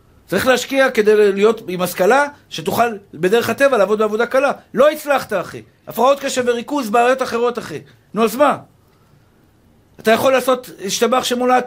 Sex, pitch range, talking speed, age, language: male, 175-270 Hz, 150 wpm, 50-69, Hebrew